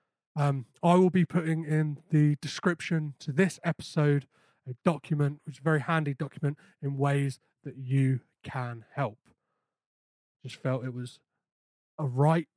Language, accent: English, British